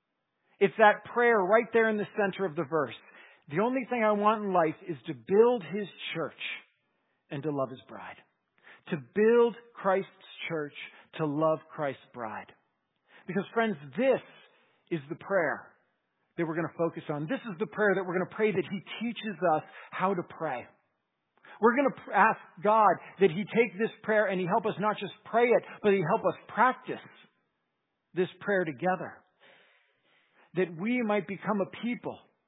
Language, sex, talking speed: English, male, 175 wpm